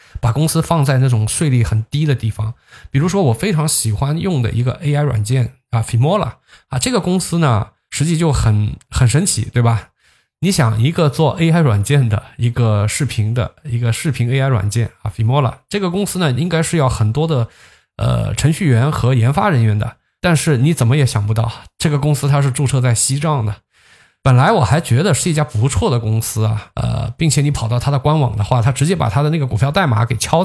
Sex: male